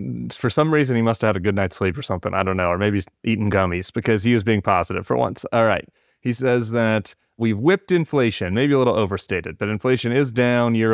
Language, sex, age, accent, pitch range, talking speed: English, male, 30-49, American, 100-135 Hz, 245 wpm